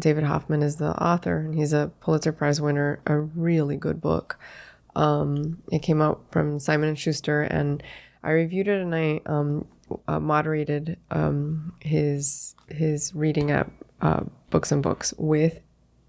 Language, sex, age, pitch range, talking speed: English, female, 20-39, 150-165 Hz, 155 wpm